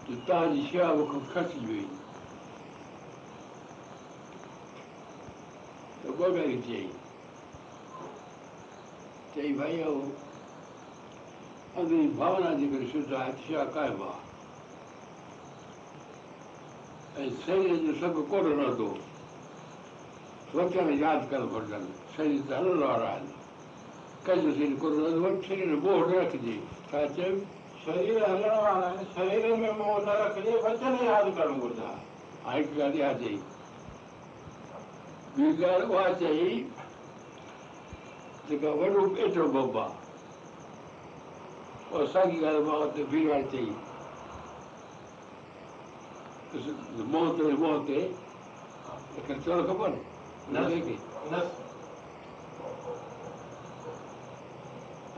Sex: male